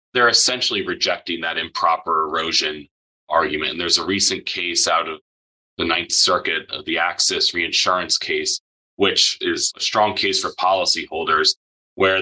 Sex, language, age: male, English, 30-49